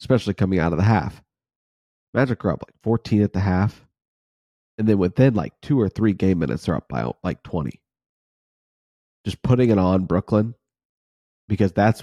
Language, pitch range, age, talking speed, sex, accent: English, 90-105 Hz, 30-49, 175 wpm, male, American